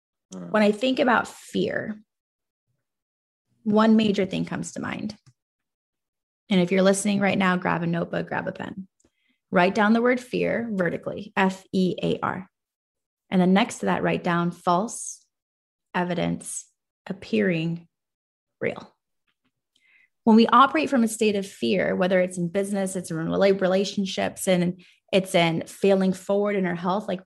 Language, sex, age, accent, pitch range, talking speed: English, female, 20-39, American, 190-245 Hz, 145 wpm